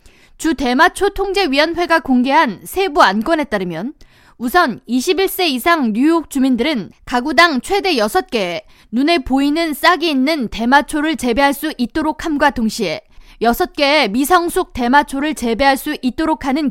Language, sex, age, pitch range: Korean, female, 20-39, 250-335 Hz